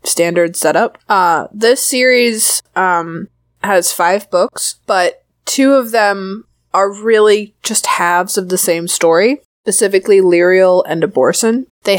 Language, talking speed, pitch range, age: English, 130 wpm, 175-225 Hz, 20-39